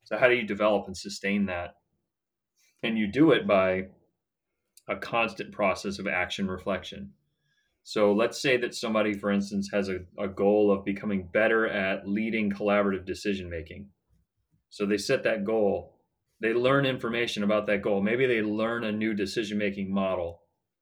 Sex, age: male, 30-49